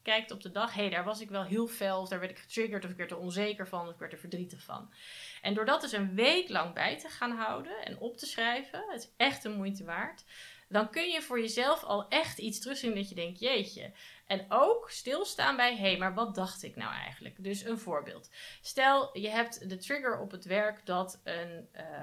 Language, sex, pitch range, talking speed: Dutch, female, 175-230 Hz, 240 wpm